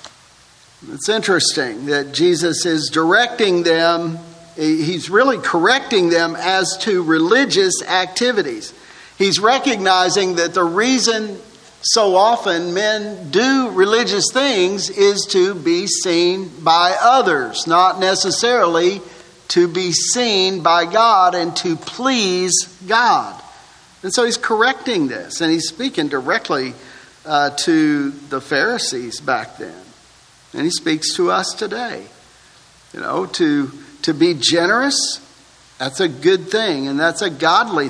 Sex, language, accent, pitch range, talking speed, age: male, English, American, 165-230 Hz, 125 wpm, 50-69